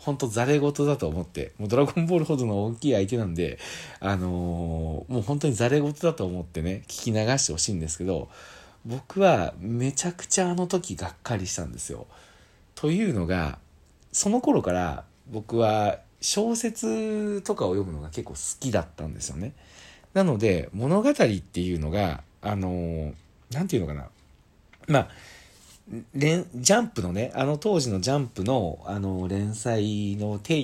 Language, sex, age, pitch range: Japanese, male, 40-59, 90-140 Hz